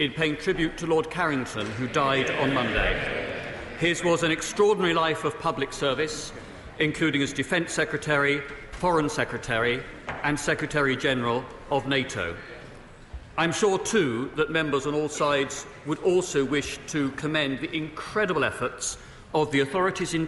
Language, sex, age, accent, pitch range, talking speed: English, male, 40-59, British, 130-160 Hz, 145 wpm